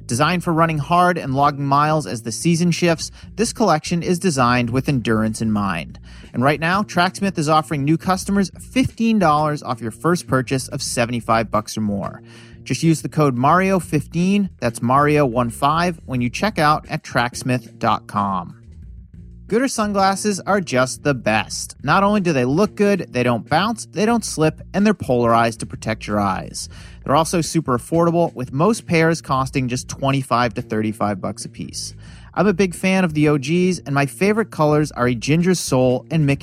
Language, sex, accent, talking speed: English, male, American, 175 wpm